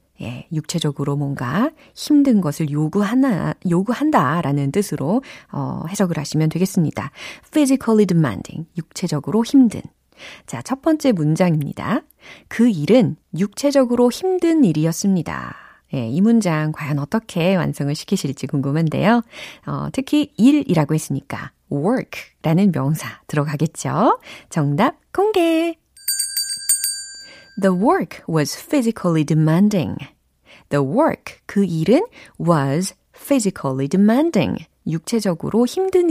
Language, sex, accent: Korean, female, native